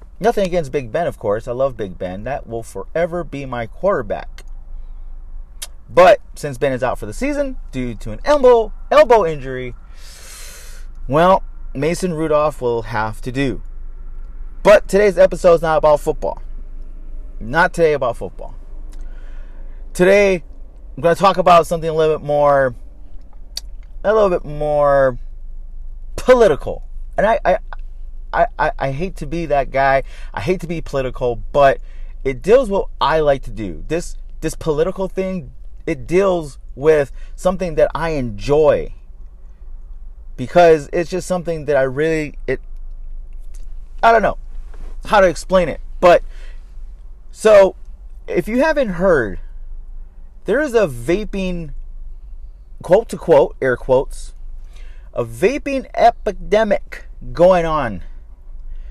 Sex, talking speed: male, 135 wpm